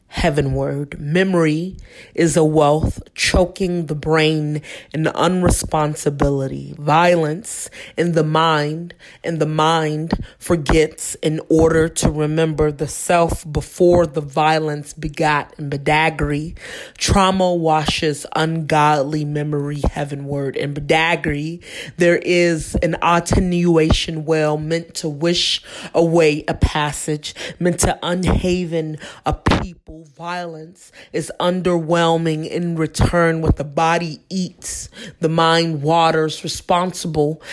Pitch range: 155-175 Hz